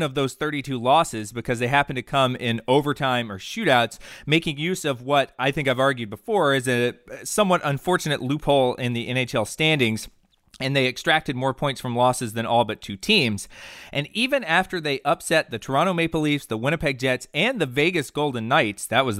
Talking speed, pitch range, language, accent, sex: 195 wpm, 120-155 Hz, English, American, male